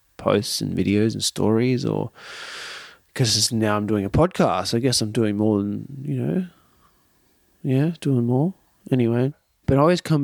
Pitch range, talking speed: 100-125 Hz, 165 wpm